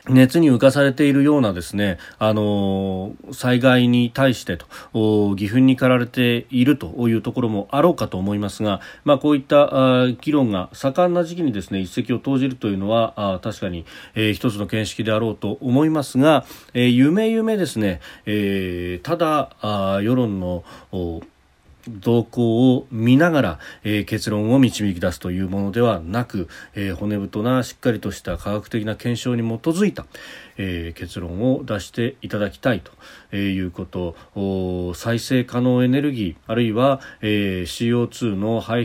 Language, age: Japanese, 40-59